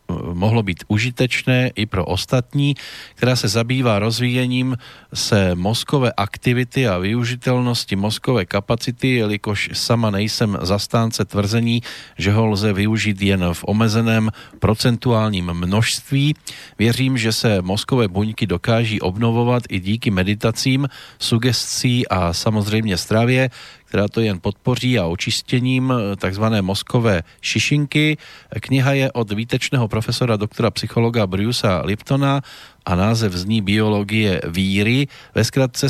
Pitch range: 105-125 Hz